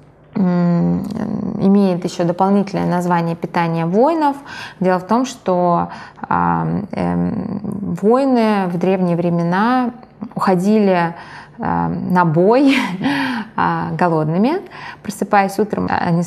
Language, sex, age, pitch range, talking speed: Russian, female, 20-39, 175-225 Hz, 90 wpm